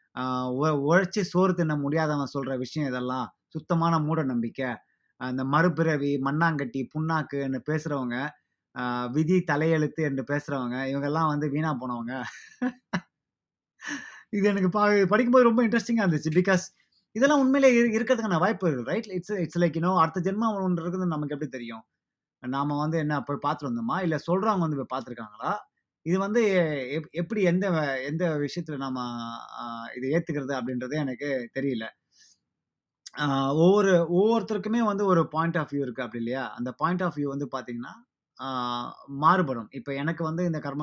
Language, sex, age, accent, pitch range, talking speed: Tamil, male, 20-39, native, 135-180 Hz, 135 wpm